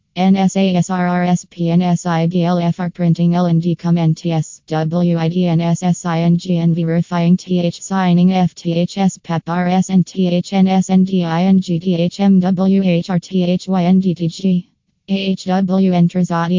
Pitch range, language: 165-180 Hz, English